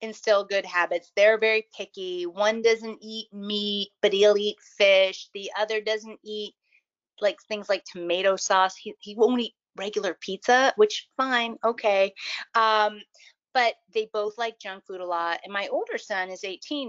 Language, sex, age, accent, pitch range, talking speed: English, female, 30-49, American, 185-235 Hz, 165 wpm